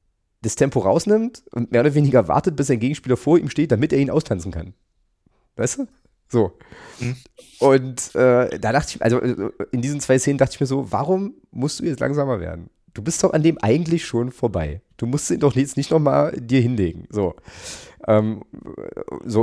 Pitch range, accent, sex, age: 105-140 Hz, German, male, 30-49